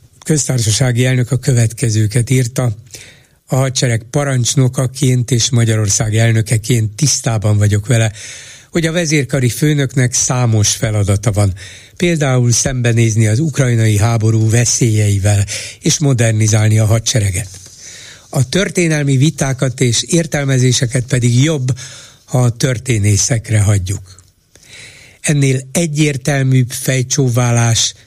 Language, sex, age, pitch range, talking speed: Hungarian, male, 60-79, 110-135 Hz, 95 wpm